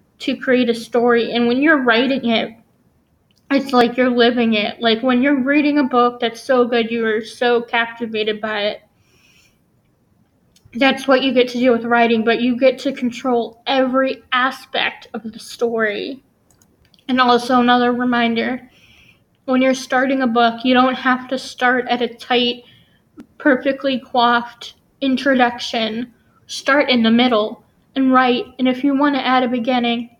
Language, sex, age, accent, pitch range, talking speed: English, female, 10-29, American, 235-265 Hz, 160 wpm